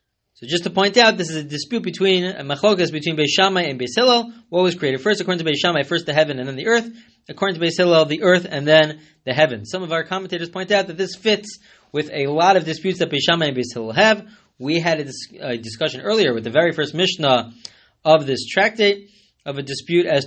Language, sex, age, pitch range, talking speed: English, male, 20-39, 130-180 Hz, 230 wpm